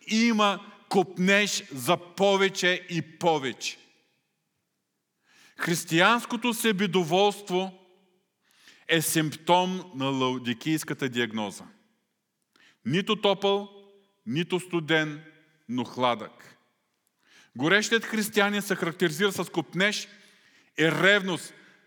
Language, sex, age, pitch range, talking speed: Bulgarian, male, 40-59, 130-195 Hz, 75 wpm